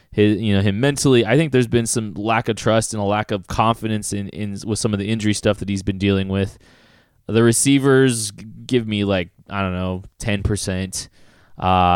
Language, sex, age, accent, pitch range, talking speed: English, male, 20-39, American, 95-120 Hz, 205 wpm